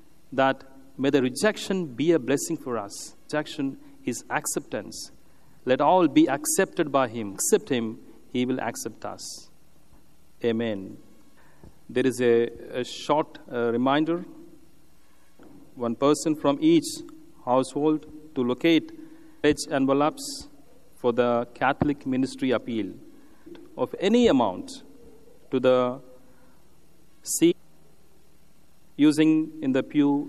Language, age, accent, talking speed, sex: English, 40-59, Indian, 110 wpm, male